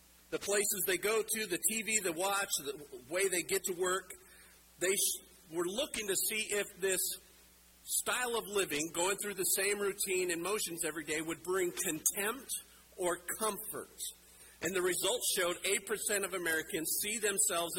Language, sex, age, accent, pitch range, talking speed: English, male, 50-69, American, 165-215 Hz, 165 wpm